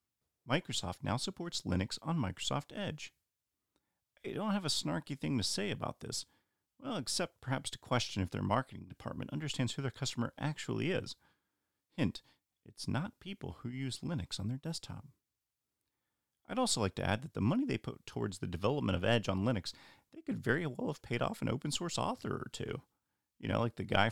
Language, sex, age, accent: English, male, 40-59, American